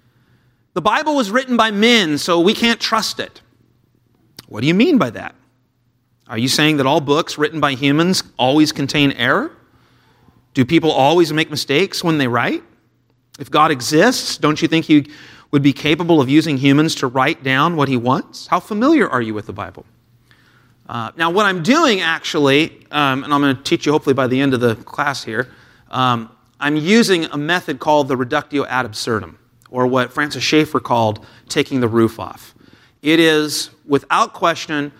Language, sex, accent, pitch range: English, male, American, 125-160 Hz